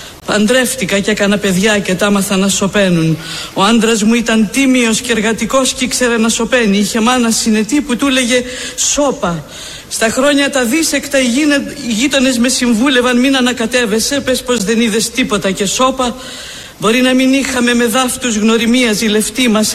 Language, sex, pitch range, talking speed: Greek, female, 215-260 Hz, 160 wpm